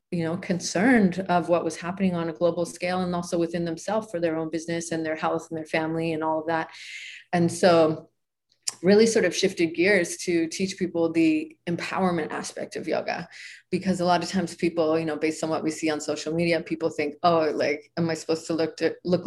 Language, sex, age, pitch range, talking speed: English, female, 30-49, 160-180 Hz, 220 wpm